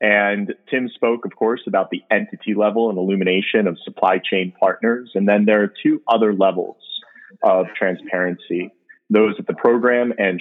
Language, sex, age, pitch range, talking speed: English, male, 30-49, 95-110 Hz, 165 wpm